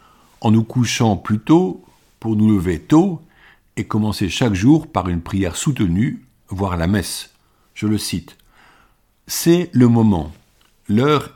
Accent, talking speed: French, 145 wpm